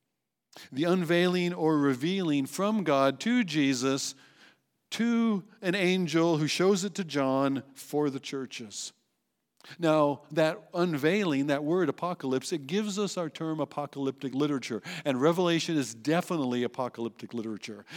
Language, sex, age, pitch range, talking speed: English, male, 50-69, 135-195 Hz, 125 wpm